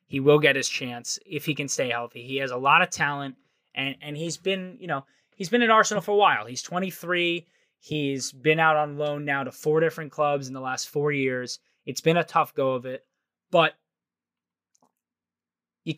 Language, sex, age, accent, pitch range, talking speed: English, male, 20-39, American, 140-170 Hz, 205 wpm